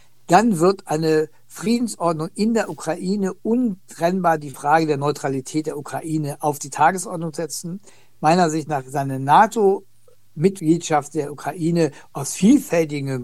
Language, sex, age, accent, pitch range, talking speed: German, male, 60-79, German, 140-175 Hz, 120 wpm